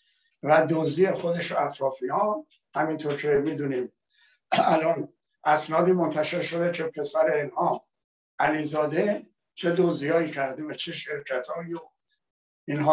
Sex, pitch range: male, 160-210 Hz